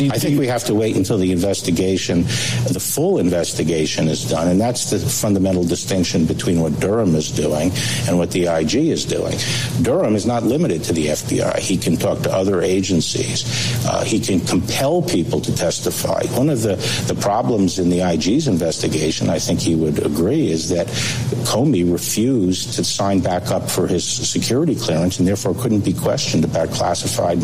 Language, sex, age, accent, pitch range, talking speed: English, male, 60-79, American, 90-115 Hz, 180 wpm